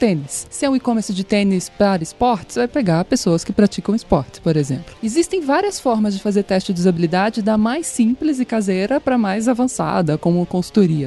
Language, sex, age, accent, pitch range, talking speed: Portuguese, female, 20-39, Brazilian, 185-245 Hz, 190 wpm